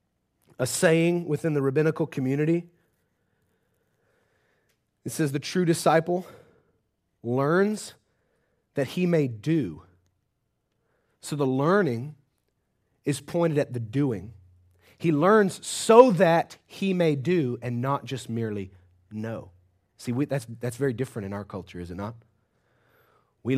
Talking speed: 120 wpm